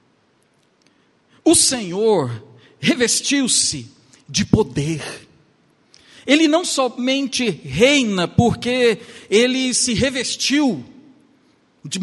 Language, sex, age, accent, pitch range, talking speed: Portuguese, male, 50-69, Brazilian, 220-310 Hz, 70 wpm